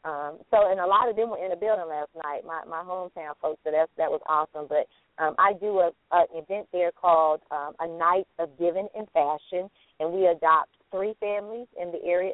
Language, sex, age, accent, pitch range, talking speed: English, female, 30-49, American, 160-200 Hz, 225 wpm